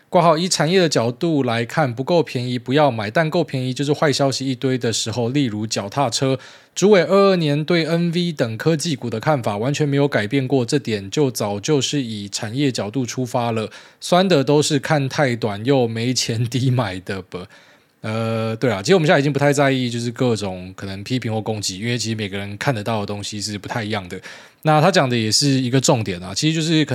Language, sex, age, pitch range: Chinese, male, 20-39, 105-140 Hz